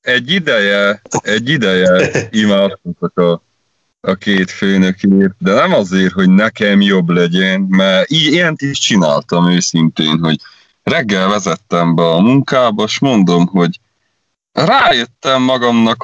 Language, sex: English, male